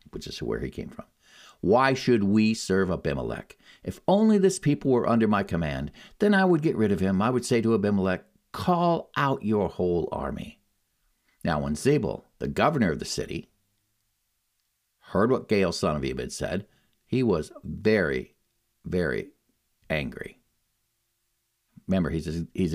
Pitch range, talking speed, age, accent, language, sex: 95-125 Hz, 160 wpm, 50-69, American, English, male